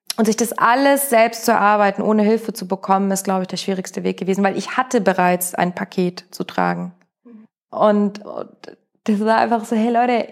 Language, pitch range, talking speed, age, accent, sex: German, 195-220 Hz, 200 wpm, 20-39, German, female